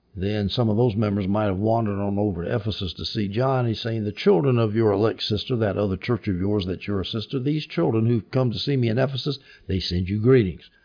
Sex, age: male, 60-79